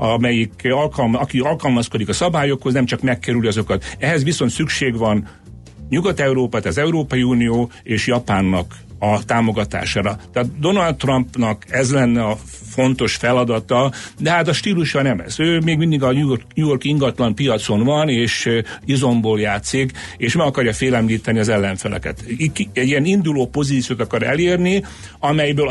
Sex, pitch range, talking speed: male, 110-135 Hz, 140 wpm